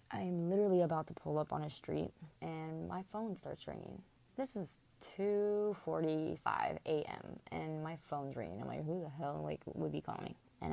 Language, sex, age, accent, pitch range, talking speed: English, female, 20-39, American, 150-175 Hz, 180 wpm